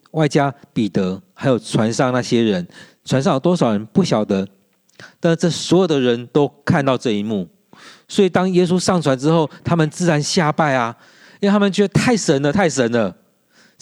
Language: Chinese